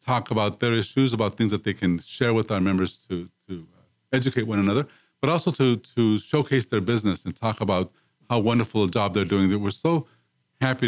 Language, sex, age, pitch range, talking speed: English, male, 40-59, 100-120 Hz, 205 wpm